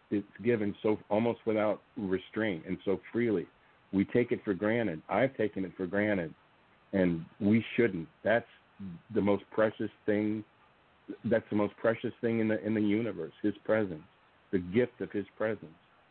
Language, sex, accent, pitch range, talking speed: English, male, American, 100-120 Hz, 165 wpm